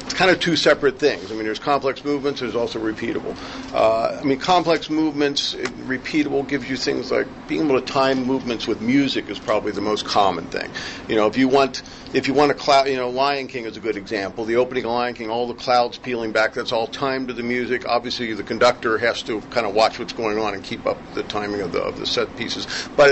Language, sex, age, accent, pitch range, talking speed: English, male, 50-69, American, 110-135 Hz, 245 wpm